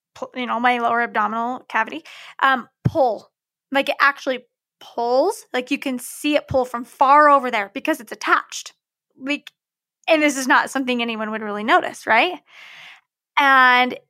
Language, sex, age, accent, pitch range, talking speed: English, female, 10-29, American, 235-290 Hz, 160 wpm